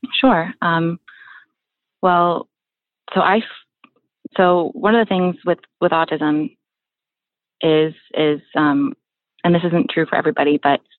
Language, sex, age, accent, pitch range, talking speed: English, female, 30-49, American, 145-175 Hz, 125 wpm